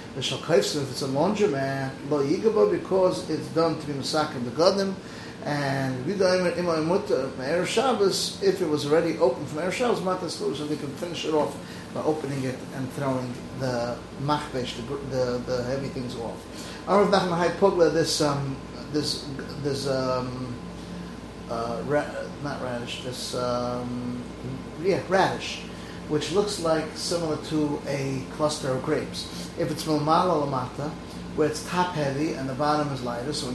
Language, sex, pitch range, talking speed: English, male, 130-160 Hz, 150 wpm